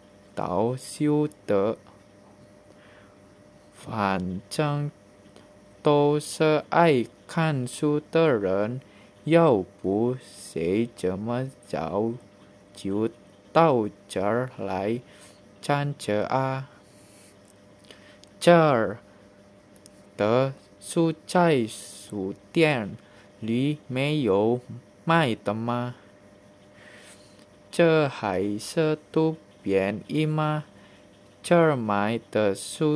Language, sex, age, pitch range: Indonesian, male, 20-39, 100-140 Hz